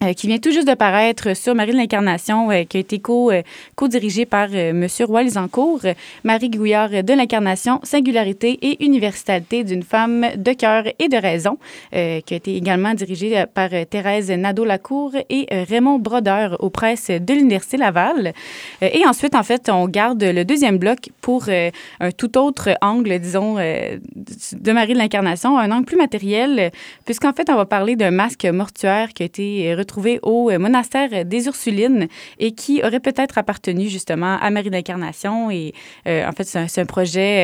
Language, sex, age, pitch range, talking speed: French, female, 20-39, 185-235 Hz, 185 wpm